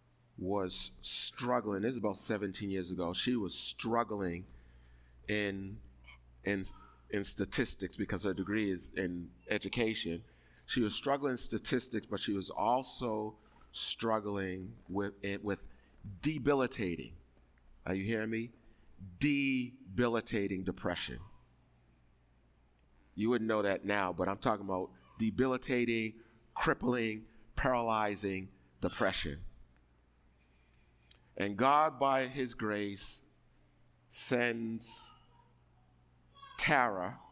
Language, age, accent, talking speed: English, 30-49, American, 95 wpm